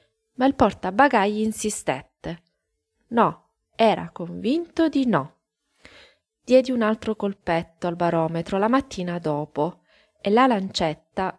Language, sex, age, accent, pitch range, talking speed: Italian, female, 20-39, native, 175-260 Hz, 110 wpm